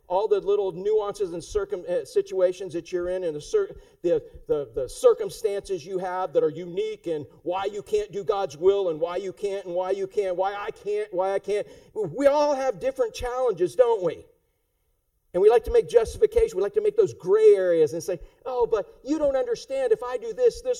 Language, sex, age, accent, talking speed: English, male, 50-69, American, 210 wpm